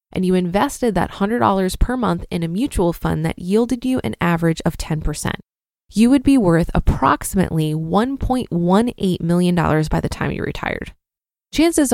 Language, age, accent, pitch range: English, 20-39, American, 175-235 Hz